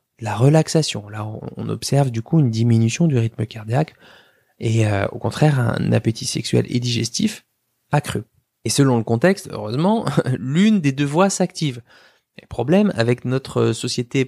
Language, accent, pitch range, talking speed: French, French, 115-165 Hz, 155 wpm